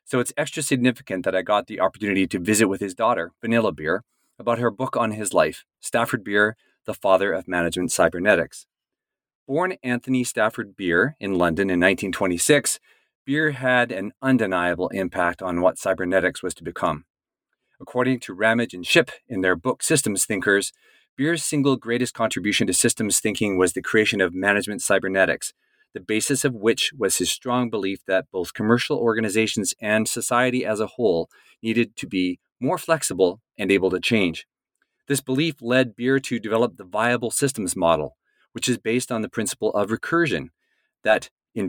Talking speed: 170 wpm